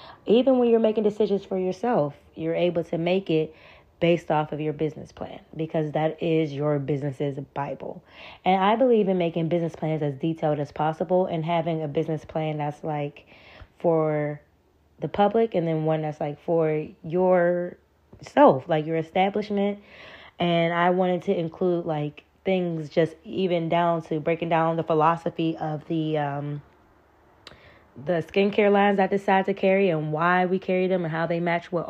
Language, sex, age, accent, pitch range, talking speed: English, female, 10-29, American, 155-190 Hz, 170 wpm